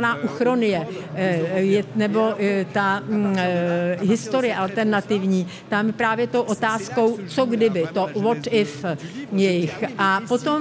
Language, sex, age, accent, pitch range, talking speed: Czech, female, 50-69, native, 200-240 Hz, 100 wpm